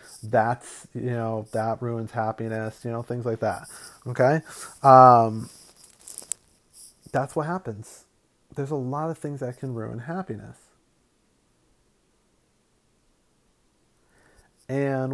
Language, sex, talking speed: English, male, 105 wpm